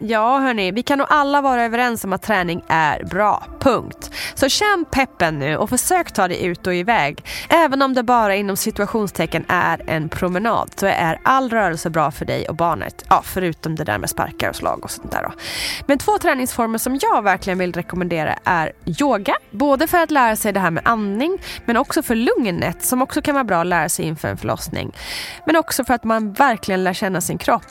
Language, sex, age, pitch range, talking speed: Swedish, female, 20-39, 180-265 Hz, 215 wpm